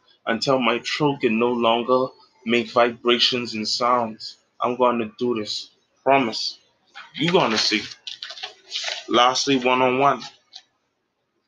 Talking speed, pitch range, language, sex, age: 115 wpm, 115-155 Hz, English, male, 20-39